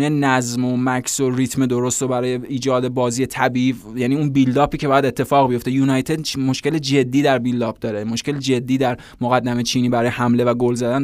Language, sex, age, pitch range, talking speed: Persian, male, 20-39, 130-150 Hz, 180 wpm